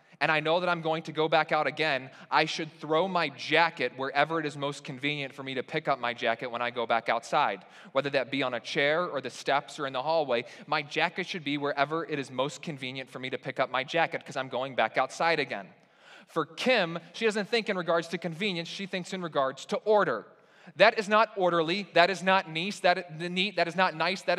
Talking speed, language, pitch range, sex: 245 wpm, English, 155-200 Hz, male